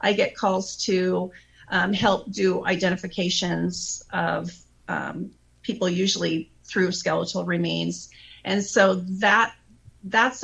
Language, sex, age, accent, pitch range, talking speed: English, female, 40-59, American, 170-195 Hz, 110 wpm